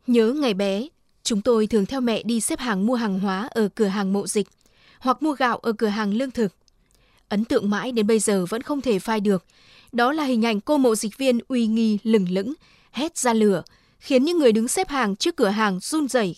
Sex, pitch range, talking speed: female, 210-250 Hz, 235 wpm